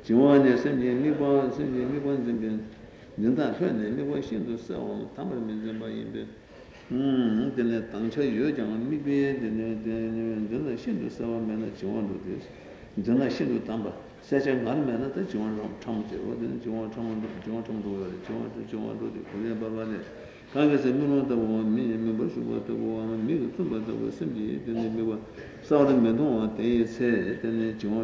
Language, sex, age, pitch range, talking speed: Italian, male, 60-79, 110-125 Hz, 60 wpm